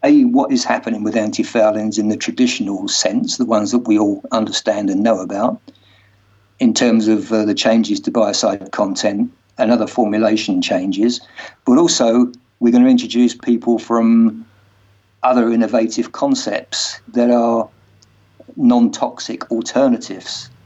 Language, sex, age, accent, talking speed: English, male, 50-69, British, 135 wpm